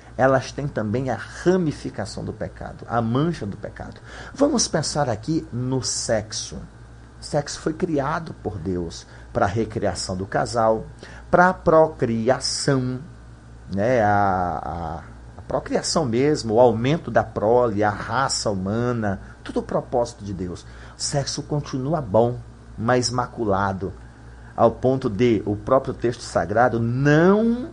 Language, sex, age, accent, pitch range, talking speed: Portuguese, male, 40-59, Brazilian, 100-145 Hz, 130 wpm